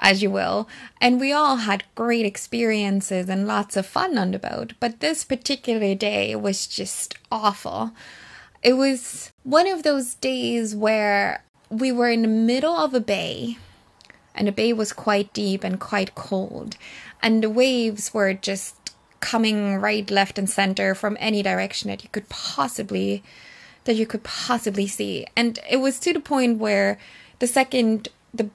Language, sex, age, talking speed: English, female, 20-39, 165 wpm